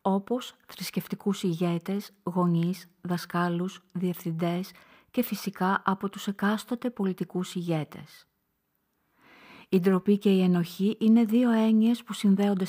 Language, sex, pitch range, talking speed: Greek, female, 175-220 Hz, 110 wpm